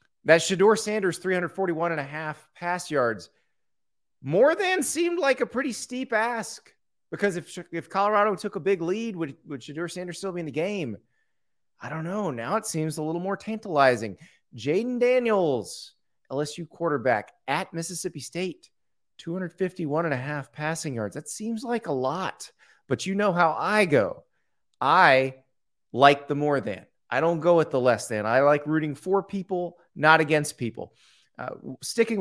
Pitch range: 135-180 Hz